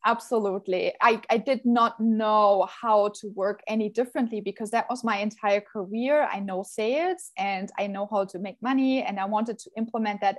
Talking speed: 190 wpm